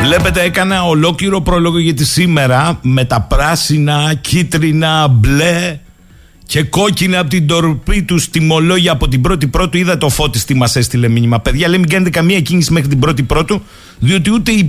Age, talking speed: 50-69, 170 wpm